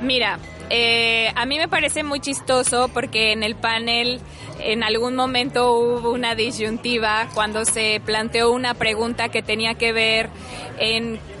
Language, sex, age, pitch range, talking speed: Spanish, female, 20-39, 215-240 Hz, 145 wpm